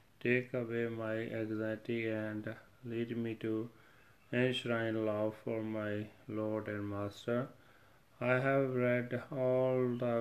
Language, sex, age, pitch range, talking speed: Punjabi, male, 30-49, 110-125 Hz, 120 wpm